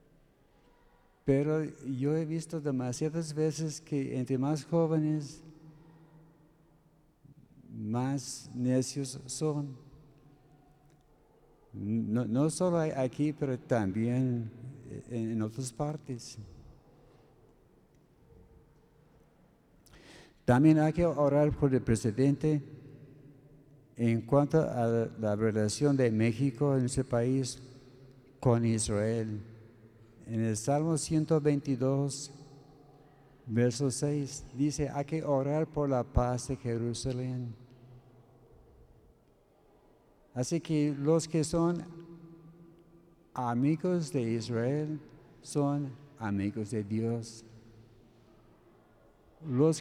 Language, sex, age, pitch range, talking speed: Spanish, male, 60-79, 120-150 Hz, 85 wpm